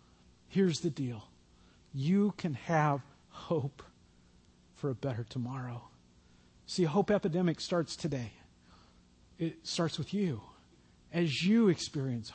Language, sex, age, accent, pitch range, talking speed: English, male, 50-69, American, 135-200 Hz, 115 wpm